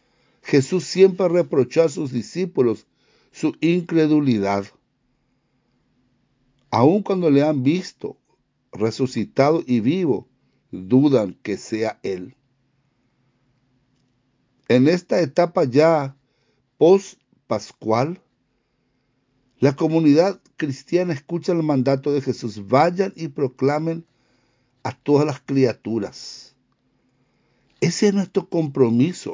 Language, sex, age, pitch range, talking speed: English, male, 60-79, 125-155 Hz, 90 wpm